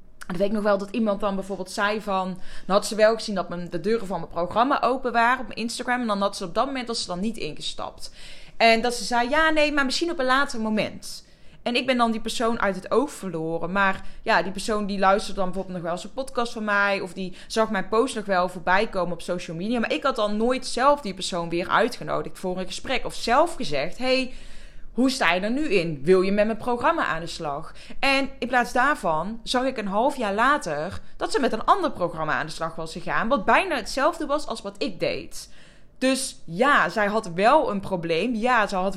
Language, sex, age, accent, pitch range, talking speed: Dutch, female, 20-39, Dutch, 185-245 Hz, 245 wpm